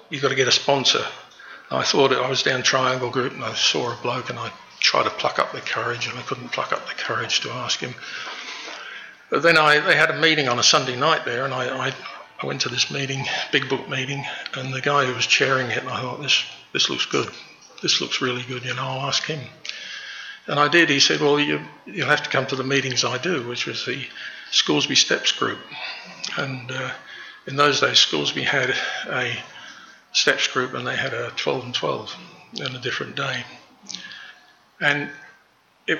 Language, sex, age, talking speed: English, male, 50-69, 215 wpm